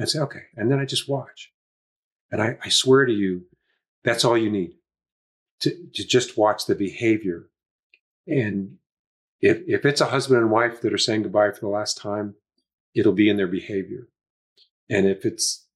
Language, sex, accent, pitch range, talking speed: English, male, American, 100-155 Hz, 185 wpm